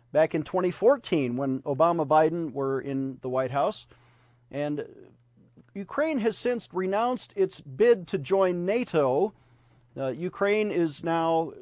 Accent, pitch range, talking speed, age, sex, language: American, 130-190 Hz, 125 wpm, 40-59, male, English